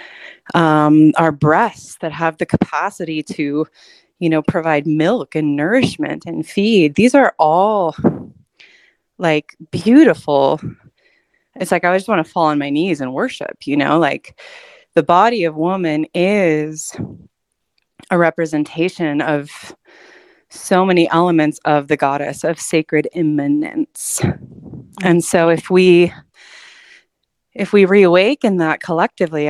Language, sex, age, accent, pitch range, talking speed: English, female, 20-39, American, 155-195 Hz, 125 wpm